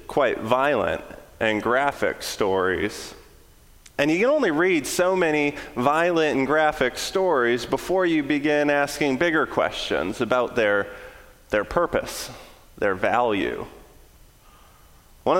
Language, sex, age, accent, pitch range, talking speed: English, male, 30-49, American, 135-180 Hz, 115 wpm